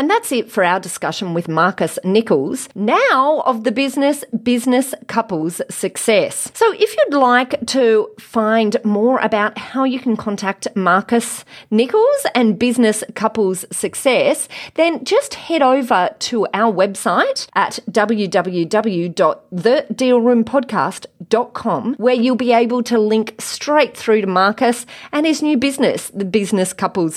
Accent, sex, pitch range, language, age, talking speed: Australian, female, 190-260 Hz, English, 30-49, 135 wpm